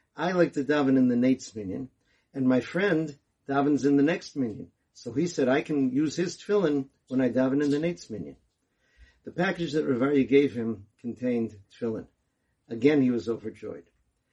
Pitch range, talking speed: 120-150 Hz, 170 wpm